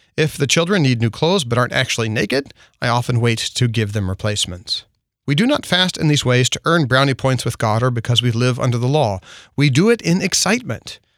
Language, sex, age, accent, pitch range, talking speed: English, male, 40-59, American, 115-155 Hz, 225 wpm